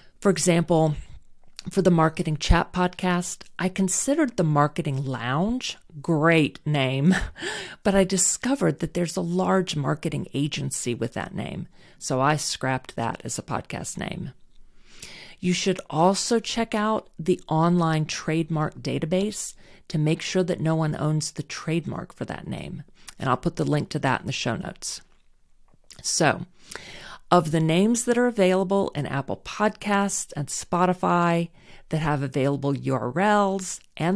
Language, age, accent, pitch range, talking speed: English, 40-59, American, 150-190 Hz, 145 wpm